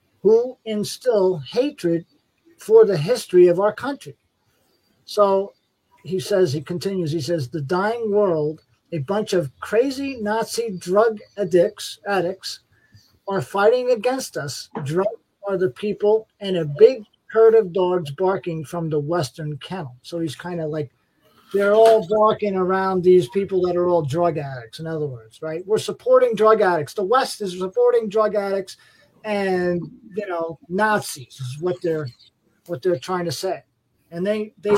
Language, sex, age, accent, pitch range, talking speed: English, male, 50-69, American, 160-210 Hz, 155 wpm